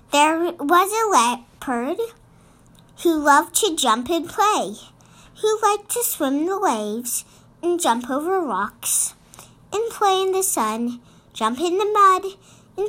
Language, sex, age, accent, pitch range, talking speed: English, male, 40-59, American, 240-340 Hz, 140 wpm